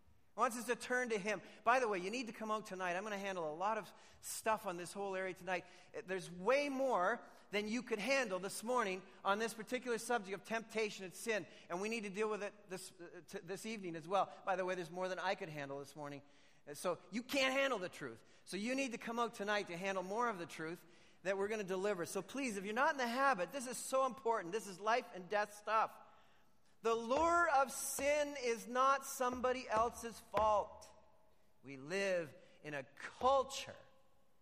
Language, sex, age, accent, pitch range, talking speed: English, male, 40-59, American, 175-230 Hz, 220 wpm